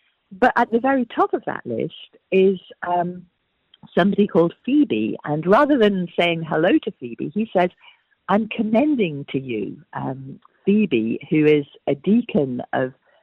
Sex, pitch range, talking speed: female, 150-230 Hz, 150 wpm